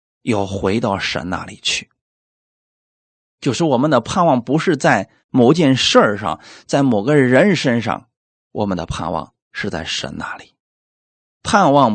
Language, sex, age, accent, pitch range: Chinese, male, 20-39, native, 105-155 Hz